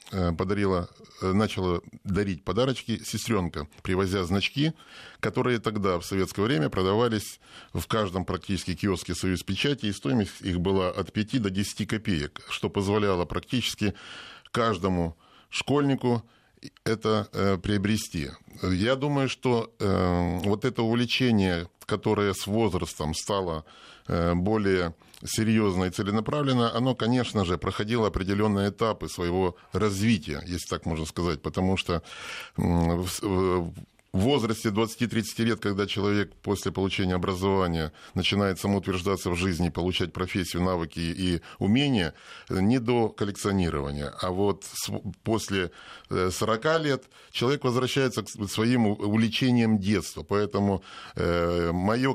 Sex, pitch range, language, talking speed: male, 90-110 Hz, Russian, 110 wpm